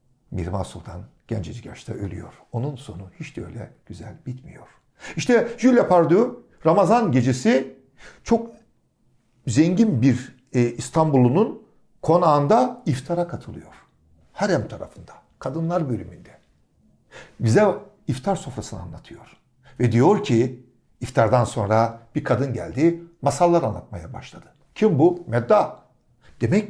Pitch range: 120-175 Hz